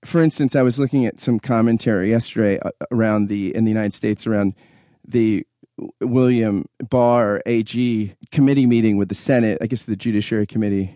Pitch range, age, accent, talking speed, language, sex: 105-140 Hz, 30-49, American, 170 wpm, English, male